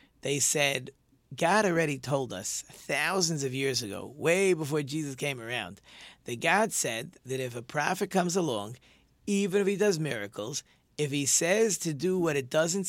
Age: 40-59